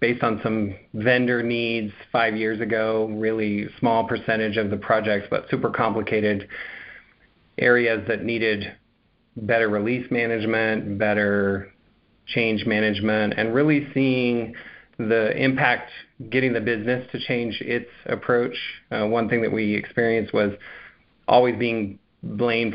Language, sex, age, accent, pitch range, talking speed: English, male, 40-59, American, 105-115 Hz, 125 wpm